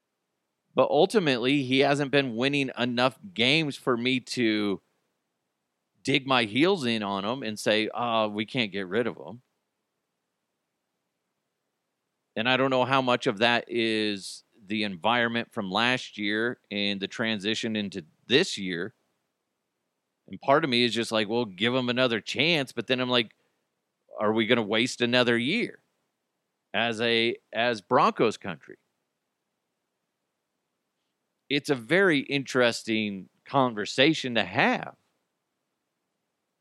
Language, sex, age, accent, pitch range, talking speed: English, male, 40-59, American, 110-130 Hz, 135 wpm